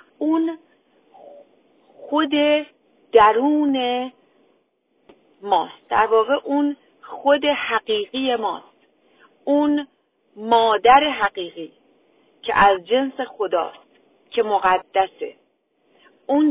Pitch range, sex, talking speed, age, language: 210-285 Hz, female, 75 wpm, 40-59, Persian